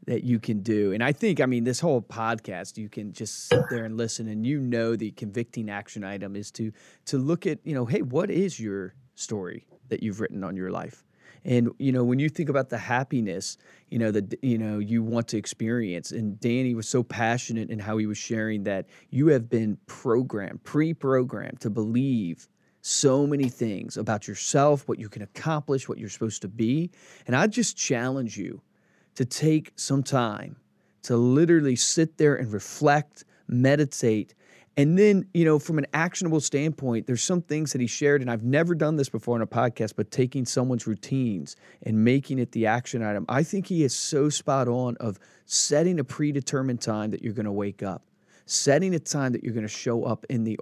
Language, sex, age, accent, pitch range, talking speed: English, male, 30-49, American, 110-145 Hz, 205 wpm